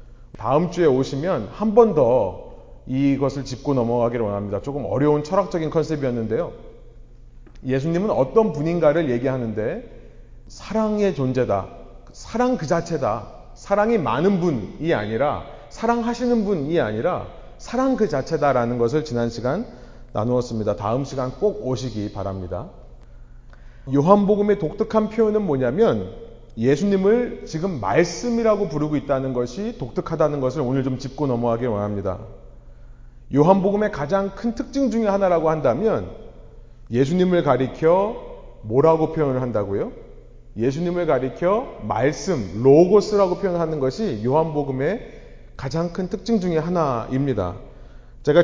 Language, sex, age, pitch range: Korean, male, 30-49, 120-195 Hz